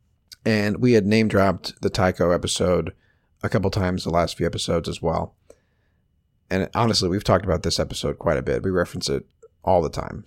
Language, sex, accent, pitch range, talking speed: English, male, American, 90-115 Hz, 185 wpm